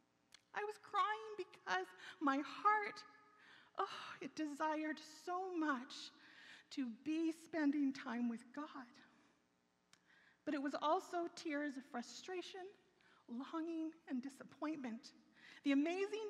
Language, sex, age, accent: English, female, 40-59, American